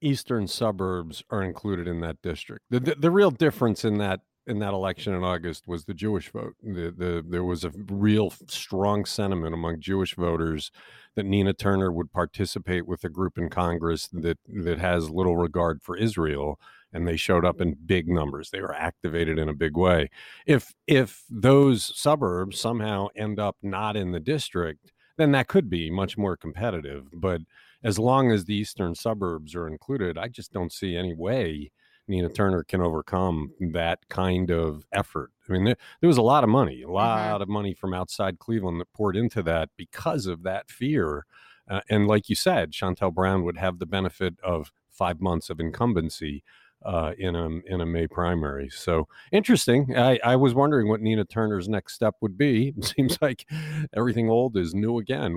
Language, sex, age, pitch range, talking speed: English, male, 50-69, 85-110 Hz, 185 wpm